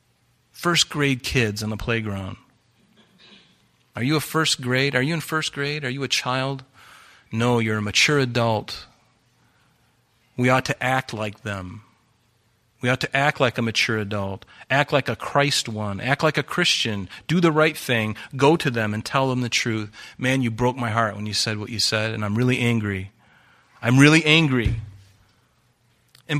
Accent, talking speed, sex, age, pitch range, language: American, 180 wpm, male, 40-59, 115-145 Hz, English